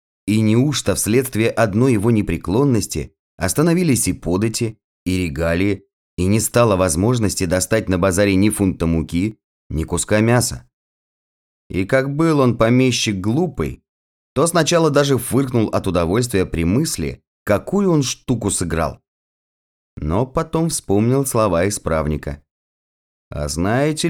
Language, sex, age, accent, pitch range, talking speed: Russian, male, 30-49, native, 80-125 Hz, 120 wpm